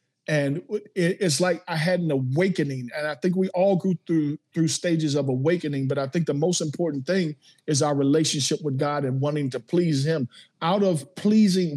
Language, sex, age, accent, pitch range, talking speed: English, male, 50-69, American, 145-180 Hz, 195 wpm